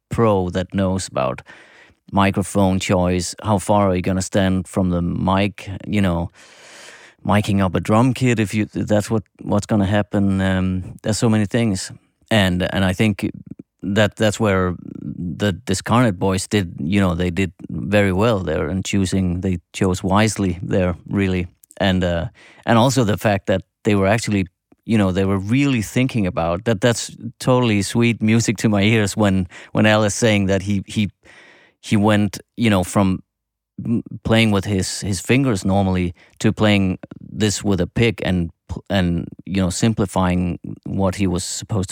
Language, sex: English, male